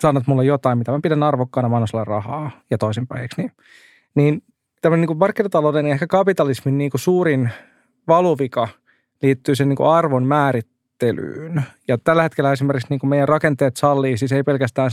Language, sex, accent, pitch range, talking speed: Finnish, male, native, 125-150 Hz, 160 wpm